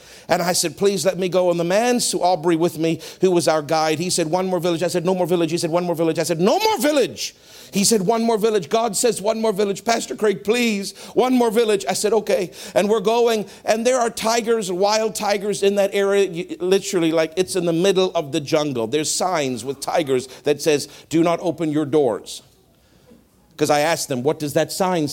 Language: English